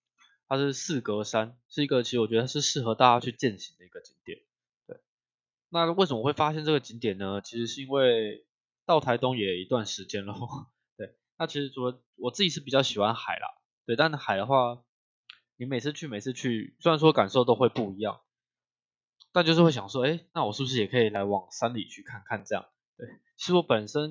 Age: 20-39